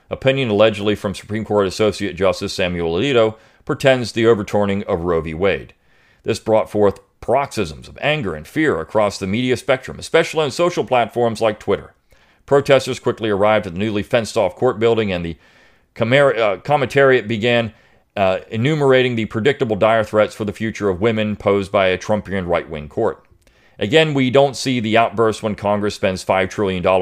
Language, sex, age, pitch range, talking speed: English, male, 40-59, 100-120 Hz, 170 wpm